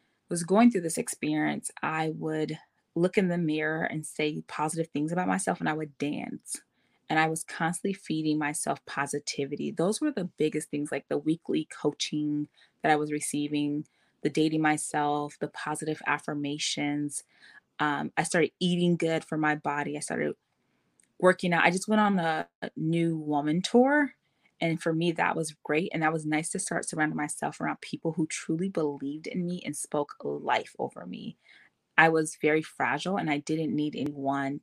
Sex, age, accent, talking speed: female, 20-39, American, 175 wpm